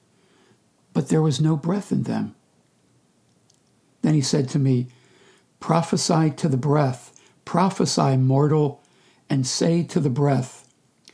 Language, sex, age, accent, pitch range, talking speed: English, male, 60-79, American, 130-160 Hz, 125 wpm